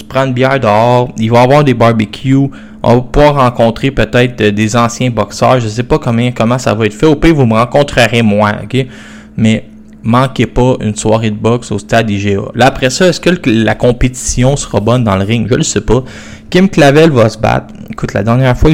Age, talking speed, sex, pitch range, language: 20-39, 225 wpm, male, 110-140 Hz, French